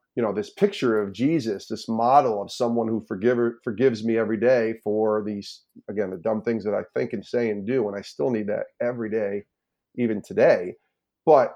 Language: English